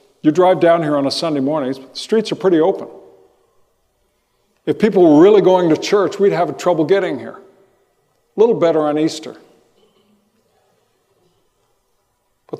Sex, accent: male, American